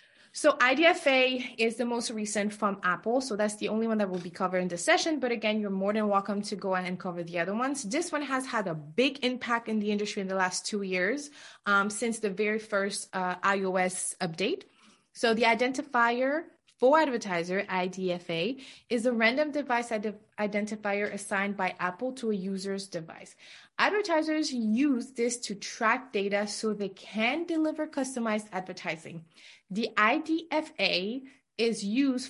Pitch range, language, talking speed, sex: 190-245 Hz, English, 170 wpm, female